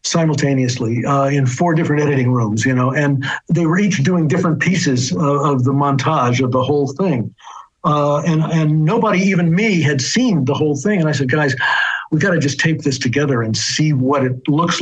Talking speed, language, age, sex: 205 wpm, English, 60-79, male